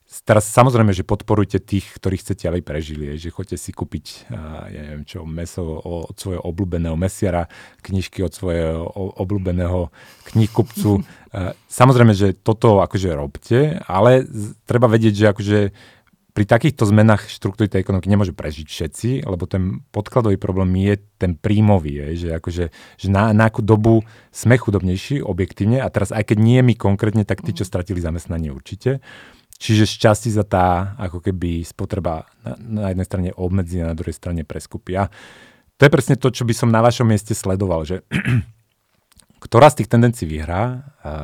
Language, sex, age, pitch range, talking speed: Slovak, male, 30-49, 90-110 Hz, 155 wpm